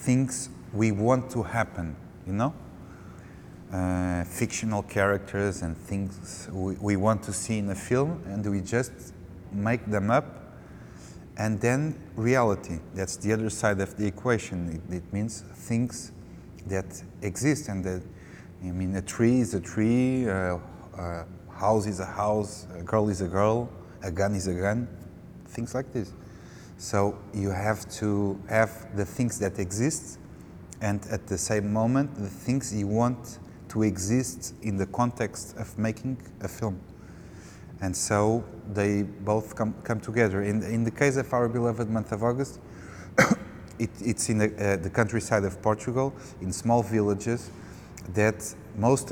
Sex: male